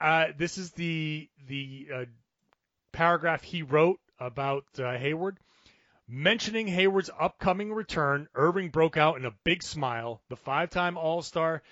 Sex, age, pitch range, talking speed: male, 30-49, 135-175 Hz, 135 wpm